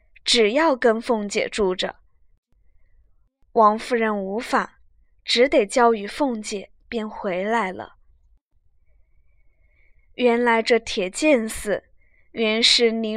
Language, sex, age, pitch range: Chinese, female, 20-39, 195-255 Hz